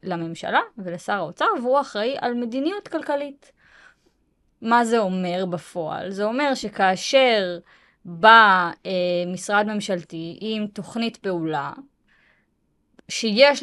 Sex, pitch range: female, 190-275 Hz